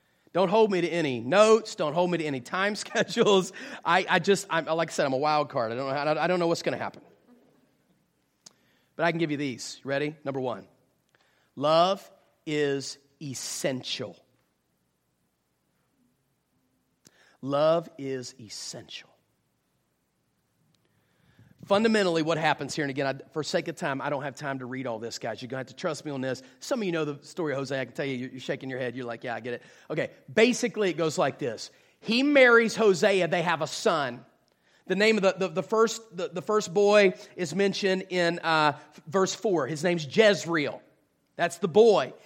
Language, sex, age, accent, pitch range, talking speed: English, male, 40-59, American, 140-215 Hz, 195 wpm